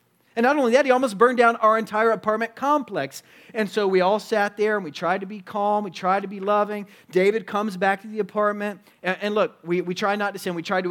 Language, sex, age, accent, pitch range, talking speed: English, male, 40-59, American, 175-220 Hz, 260 wpm